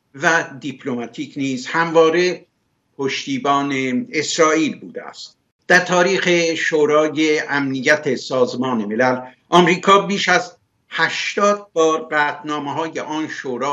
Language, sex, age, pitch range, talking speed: Persian, male, 60-79, 130-165 Hz, 95 wpm